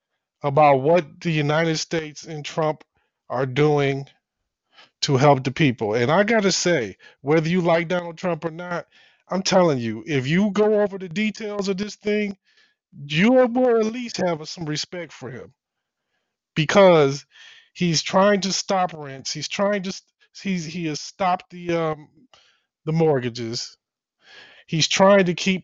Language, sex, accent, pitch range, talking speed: English, male, American, 135-180 Hz, 155 wpm